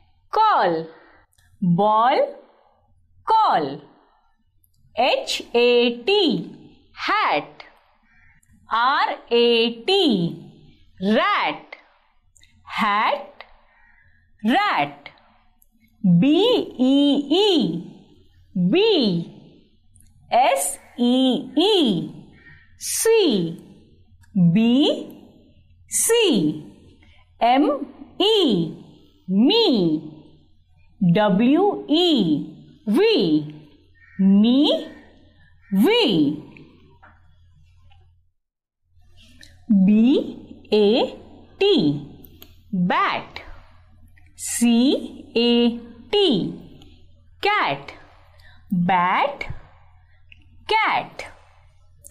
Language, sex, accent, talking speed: Marathi, female, native, 55 wpm